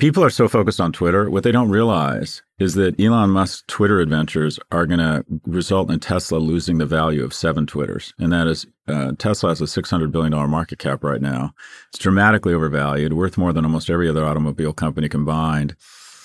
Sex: male